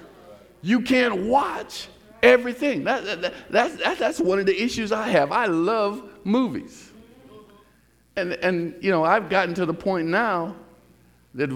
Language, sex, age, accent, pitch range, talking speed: English, male, 50-69, American, 150-205 Hz, 150 wpm